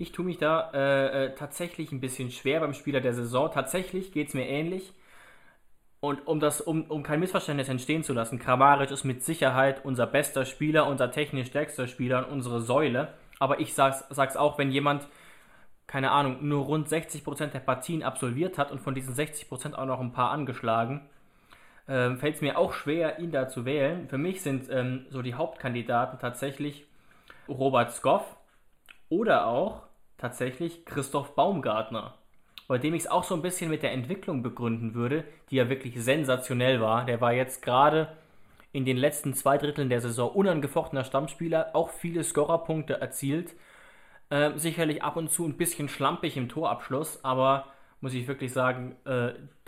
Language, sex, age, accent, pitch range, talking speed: German, male, 20-39, German, 130-150 Hz, 175 wpm